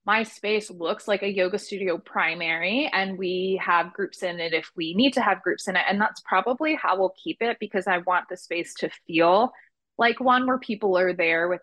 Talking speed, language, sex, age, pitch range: 220 wpm, English, female, 20-39, 180-225 Hz